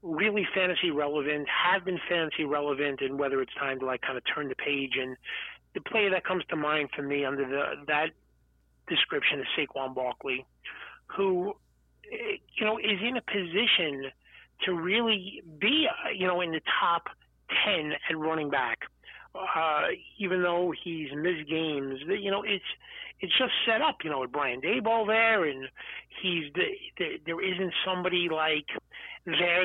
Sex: male